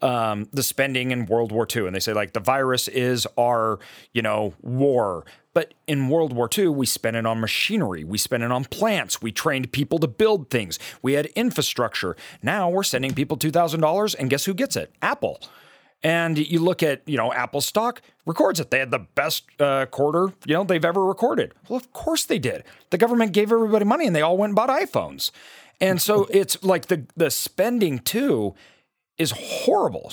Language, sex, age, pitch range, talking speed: English, male, 40-59, 120-170 Hz, 200 wpm